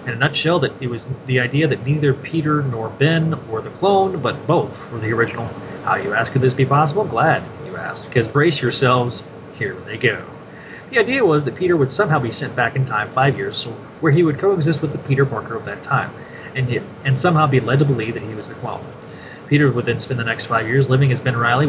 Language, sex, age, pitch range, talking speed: English, male, 30-49, 115-145 Hz, 240 wpm